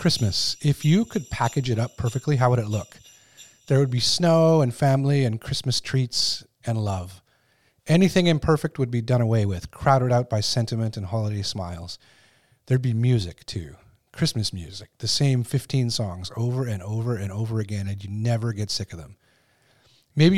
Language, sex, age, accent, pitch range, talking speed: English, male, 40-59, American, 110-140 Hz, 180 wpm